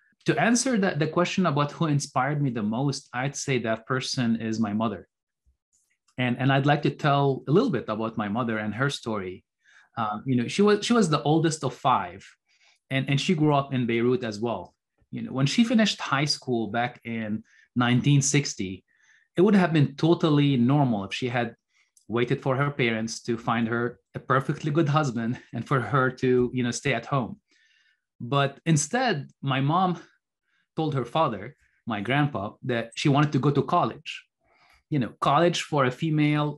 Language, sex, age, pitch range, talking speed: English, male, 30-49, 125-155 Hz, 185 wpm